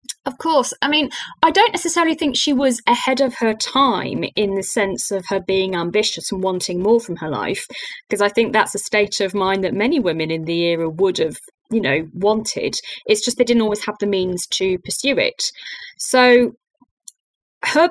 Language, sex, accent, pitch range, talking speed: English, female, British, 195-260 Hz, 200 wpm